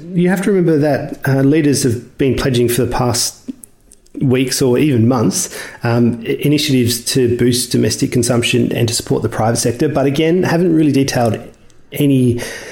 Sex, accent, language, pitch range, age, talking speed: male, Australian, English, 120-140 Hz, 30-49, 165 wpm